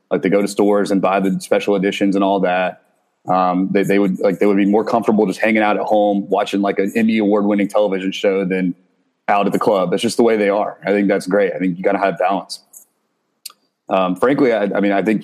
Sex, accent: male, American